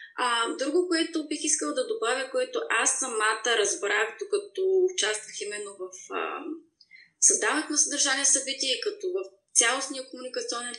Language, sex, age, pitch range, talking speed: Bulgarian, female, 20-39, 255-430 Hz, 135 wpm